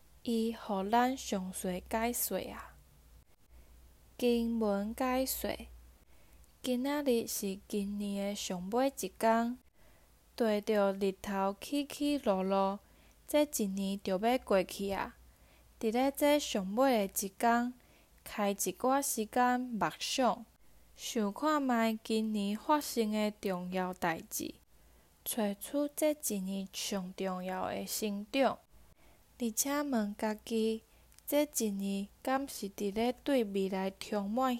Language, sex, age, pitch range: Chinese, female, 10-29, 195-250 Hz